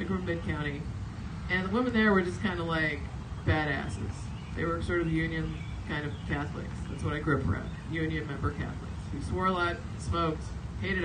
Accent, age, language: American, 40-59, English